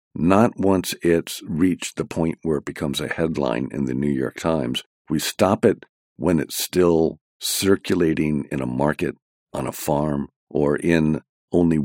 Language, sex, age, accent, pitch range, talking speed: English, male, 50-69, American, 70-85 Hz, 160 wpm